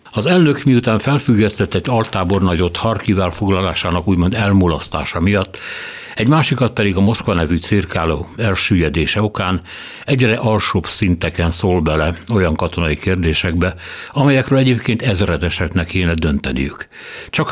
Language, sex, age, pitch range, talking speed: Hungarian, male, 60-79, 85-110 Hz, 115 wpm